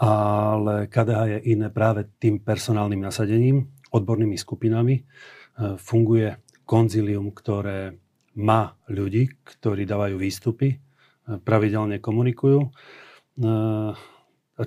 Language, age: Slovak, 40-59